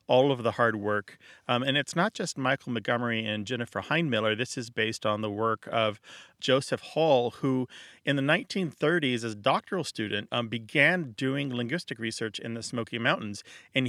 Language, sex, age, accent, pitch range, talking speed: English, male, 40-59, American, 110-140 Hz, 180 wpm